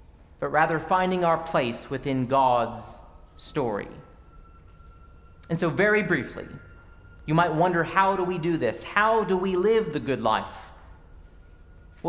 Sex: male